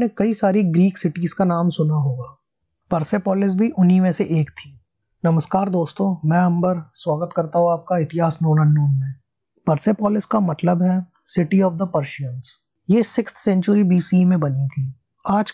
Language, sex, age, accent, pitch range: Hindi, male, 20-39, native, 150-195 Hz